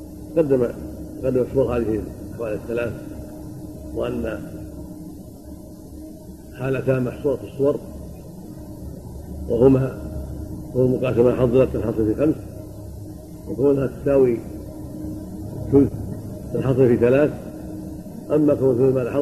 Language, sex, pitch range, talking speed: Arabic, male, 105-135 Hz, 80 wpm